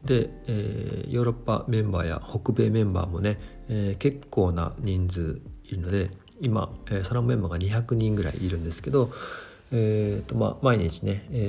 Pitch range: 95-120 Hz